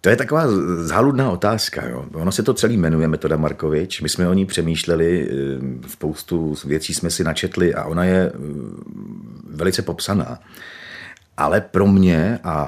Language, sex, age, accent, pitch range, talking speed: Czech, male, 40-59, native, 80-95 Hz, 145 wpm